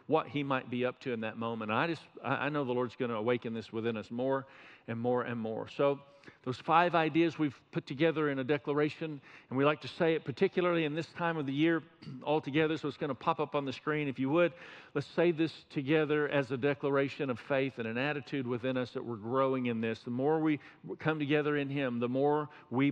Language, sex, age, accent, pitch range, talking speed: English, male, 50-69, American, 125-155 Hz, 240 wpm